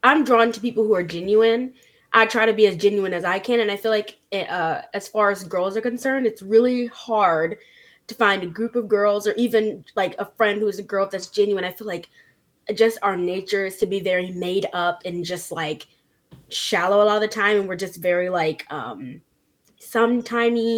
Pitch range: 180-225 Hz